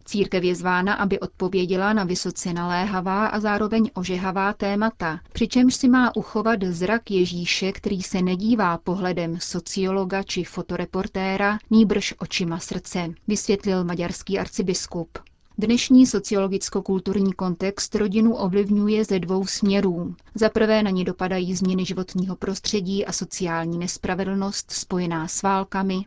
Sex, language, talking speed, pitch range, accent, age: female, Czech, 120 wpm, 180-210 Hz, native, 30-49